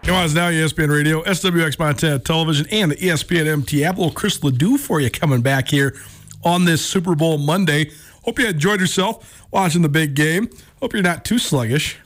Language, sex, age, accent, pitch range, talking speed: English, male, 40-59, American, 135-180 Hz, 185 wpm